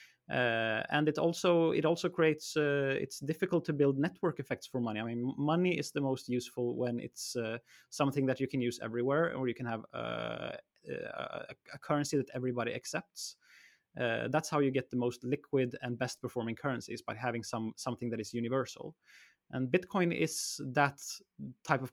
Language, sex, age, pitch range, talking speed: Swedish, male, 20-39, 120-150 Hz, 190 wpm